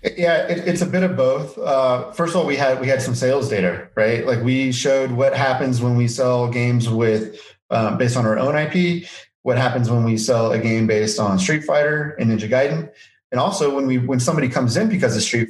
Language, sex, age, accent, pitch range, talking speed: English, male, 30-49, American, 115-135 Hz, 230 wpm